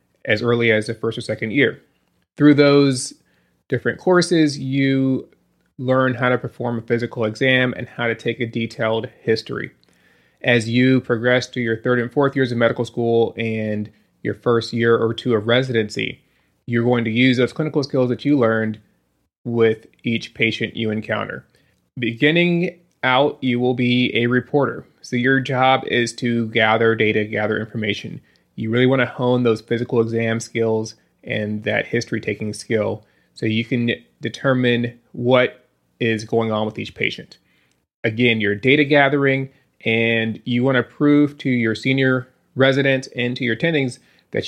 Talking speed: 165 wpm